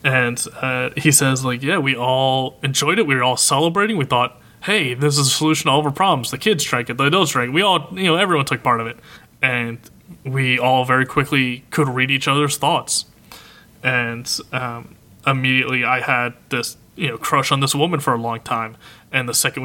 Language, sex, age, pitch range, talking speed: English, male, 20-39, 120-145 Hz, 220 wpm